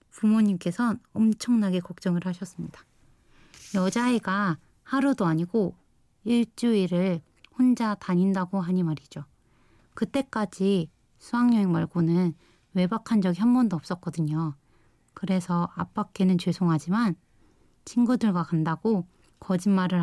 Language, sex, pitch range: Korean, female, 175-220 Hz